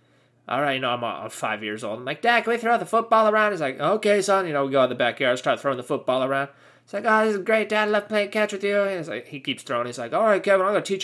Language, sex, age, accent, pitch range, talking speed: English, male, 20-39, American, 140-195 Hz, 330 wpm